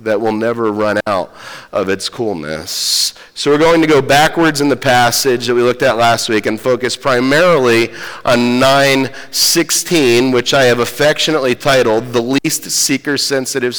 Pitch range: 115-140 Hz